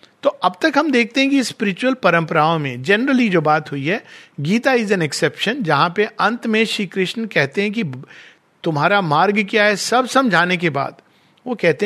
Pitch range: 170-235 Hz